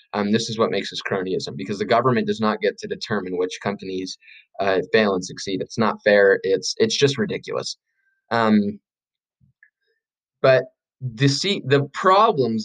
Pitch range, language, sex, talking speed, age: 105-145 Hz, English, male, 160 wpm, 20-39